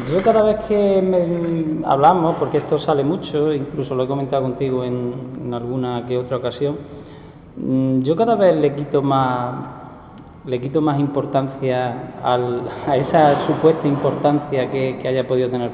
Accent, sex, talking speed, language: Spanish, male, 155 wpm, Spanish